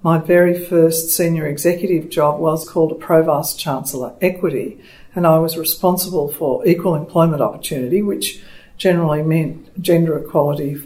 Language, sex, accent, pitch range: English, female, Australian, 155-180 Hz